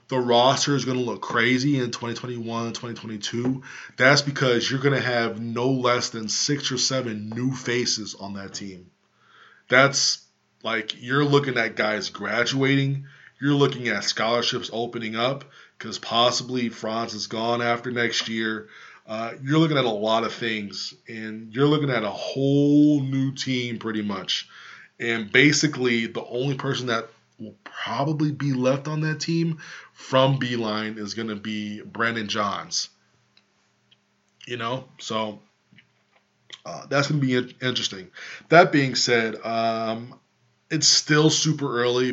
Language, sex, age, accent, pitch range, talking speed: English, male, 20-39, American, 110-135 Hz, 150 wpm